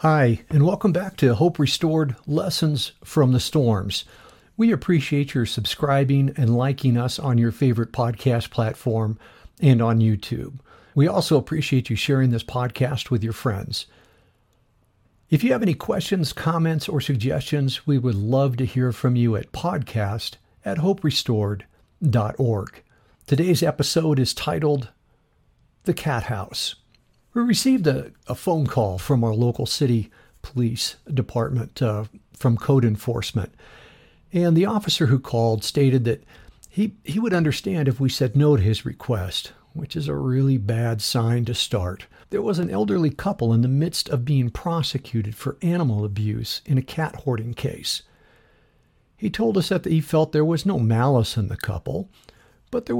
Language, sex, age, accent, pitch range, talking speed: English, male, 60-79, American, 115-155 Hz, 155 wpm